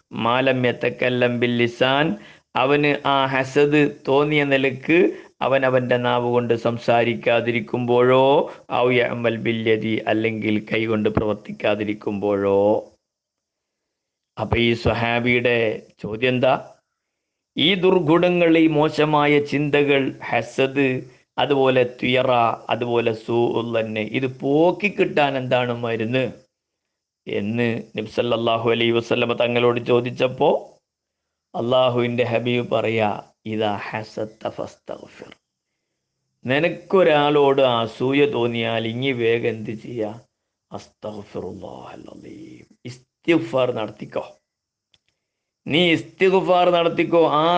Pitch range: 115-145 Hz